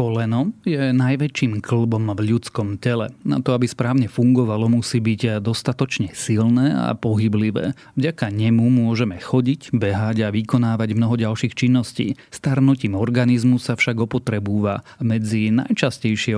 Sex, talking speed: male, 130 wpm